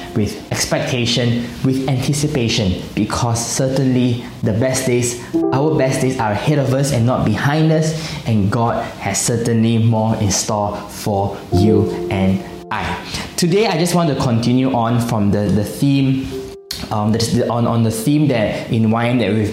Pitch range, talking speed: 105-135 Hz, 165 wpm